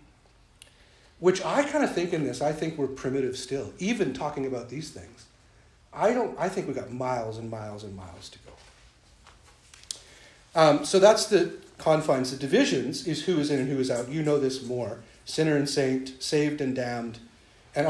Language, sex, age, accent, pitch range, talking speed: English, male, 50-69, American, 120-155 Hz, 190 wpm